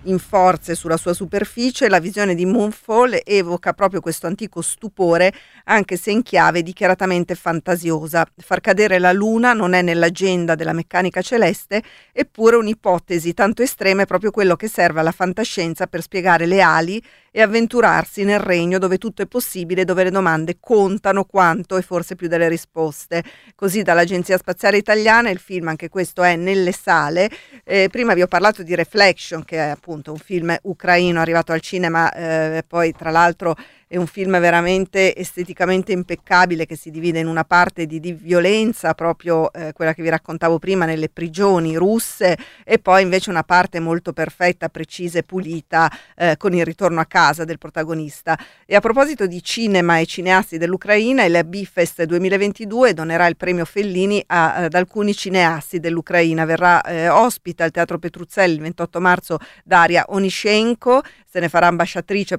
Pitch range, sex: 170-195 Hz, female